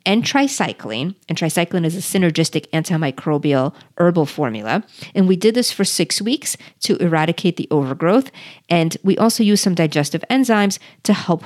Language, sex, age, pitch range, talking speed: English, female, 50-69, 155-205 Hz, 155 wpm